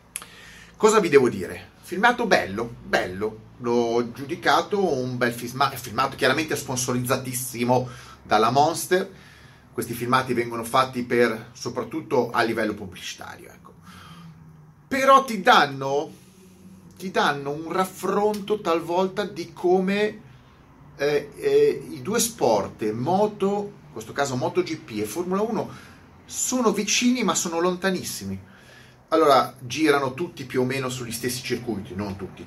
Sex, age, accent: male, 30-49, native